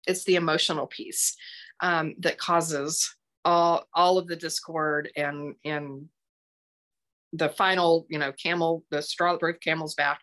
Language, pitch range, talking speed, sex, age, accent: English, 165-195 Hz, 140 wpm, female, 30-49, American